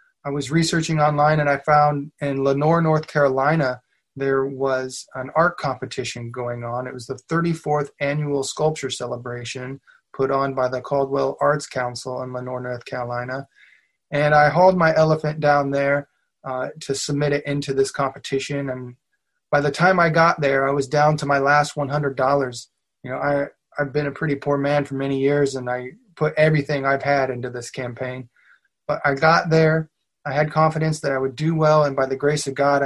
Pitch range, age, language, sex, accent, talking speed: 130-150 Hz, 20-39, English, male, American, 185 wpm